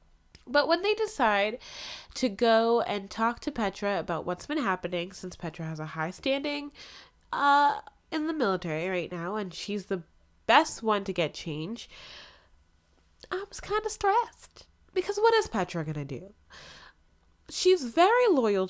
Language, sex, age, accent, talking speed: English, female, 10-29, American, 155 wpm